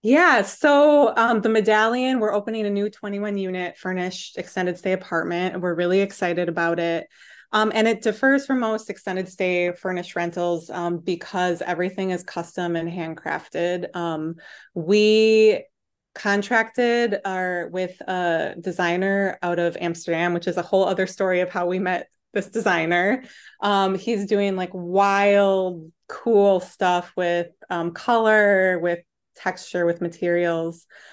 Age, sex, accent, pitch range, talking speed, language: 20-39, female, American, 175-205 Hz, 145 wpm, English